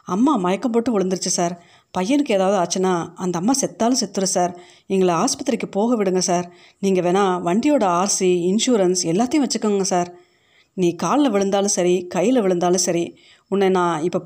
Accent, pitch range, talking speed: native, 180-230 Hz, 150 wpm